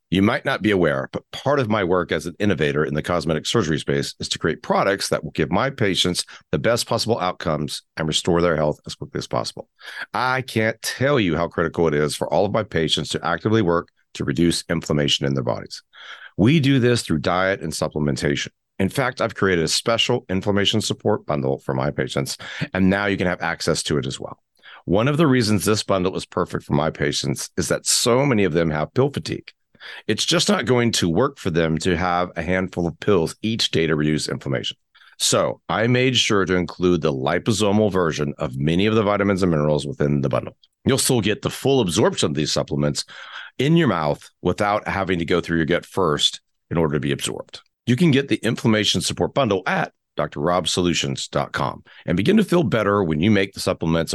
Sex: male